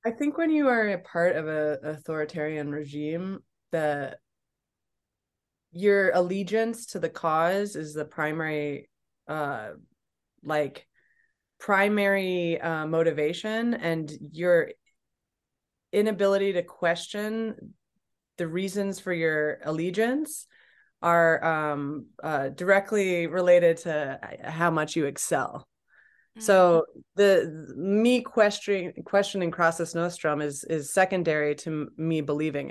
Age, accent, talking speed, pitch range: 20-39, American, 105 wpm, 155-195 Hz